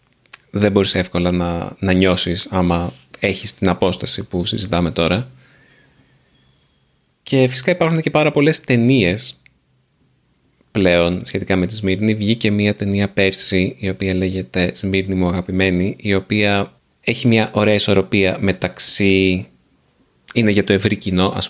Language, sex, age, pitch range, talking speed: Greek, male, 20-39, 90-115 Hz, 135 wpm